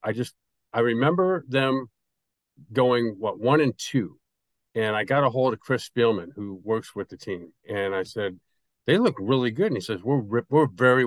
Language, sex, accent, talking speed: English, male, American, 195 wpm